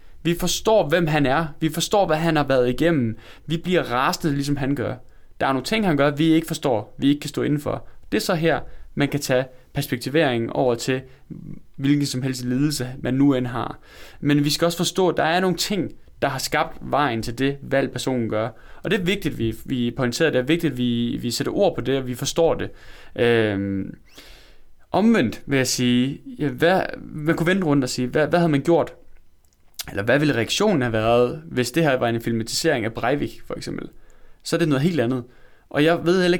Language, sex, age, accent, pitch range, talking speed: Danish, male, 20-39, native, 125-165 Hz, 220 wpm